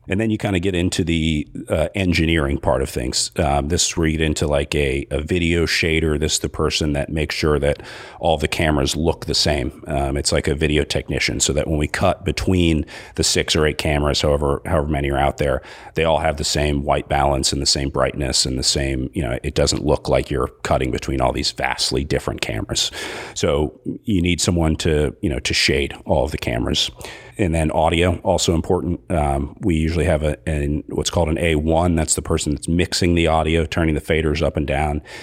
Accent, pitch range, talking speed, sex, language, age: American, 75-85 Hz, 220 wpm, male, English, 40-59